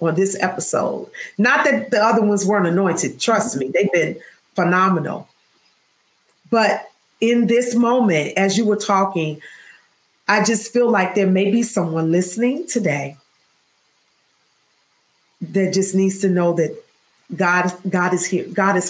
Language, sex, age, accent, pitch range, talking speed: English, female, 40-59, American, 180-210 Hz, 145 wpm